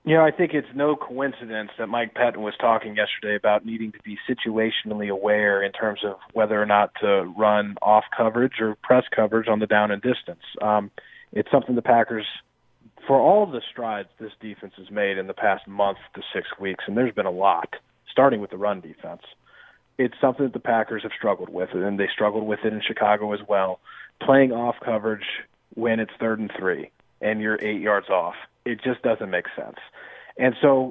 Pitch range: 110-145 Hz